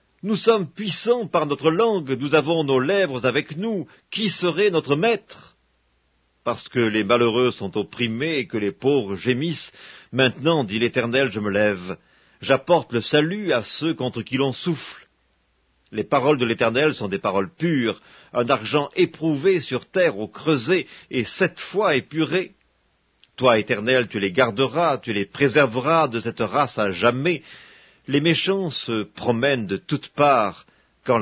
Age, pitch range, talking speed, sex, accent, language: 50-69, 110-155 Hz, 160 wpm, male, French, English